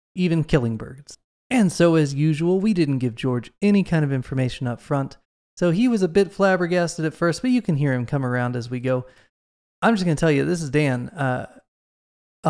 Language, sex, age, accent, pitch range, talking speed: English, male, 20-39, American, 135-180 Hz, 215 wpm